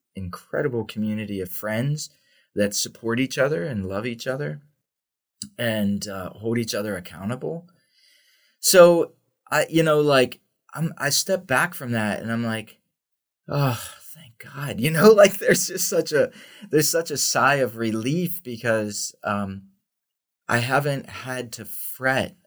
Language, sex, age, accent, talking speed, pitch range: English, male, 20-39, American, 145 wpm, 100-135 Hz